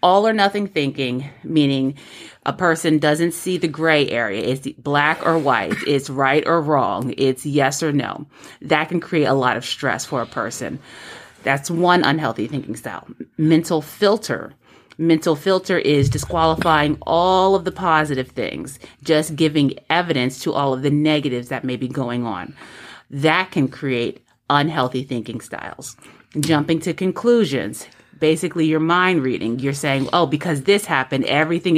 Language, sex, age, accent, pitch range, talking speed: English, female, 30-49, American, 135-175 Hz, 155 wpm